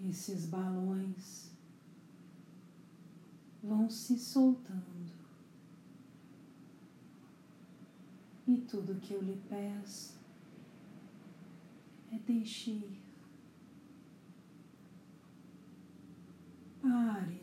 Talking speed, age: 50 wpm, 40-59